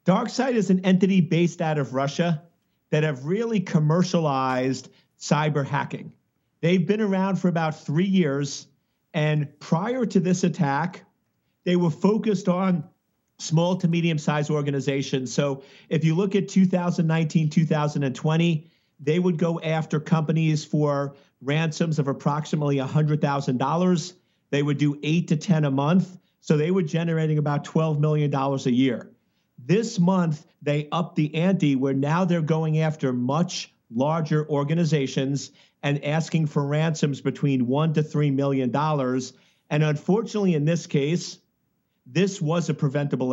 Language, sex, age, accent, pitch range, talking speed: English, male, 50-69, American, 145-175 Hz, 140 wpm